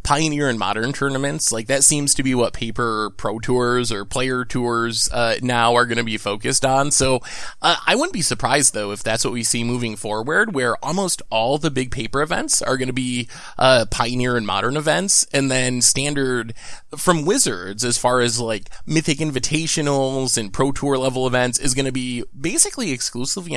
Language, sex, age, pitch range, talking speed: English, male, 20-39, 120-145 Hz, 195 wpm